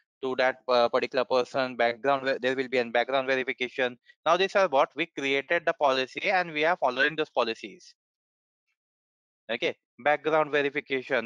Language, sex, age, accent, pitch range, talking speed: English, male, 20-39, Indian, 125-145 Hz, 150 wpm